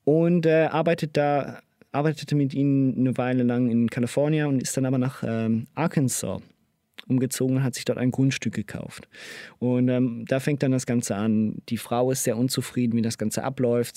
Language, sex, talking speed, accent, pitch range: German, male, 190 wpm, German, 115-140 Hz